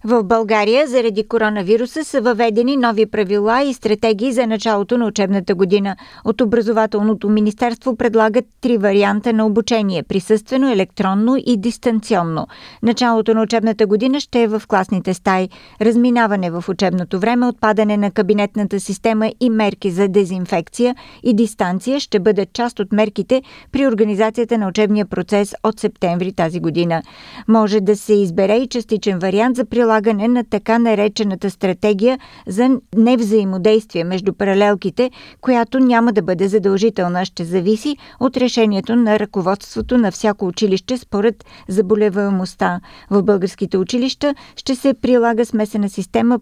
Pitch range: 200-235 Hz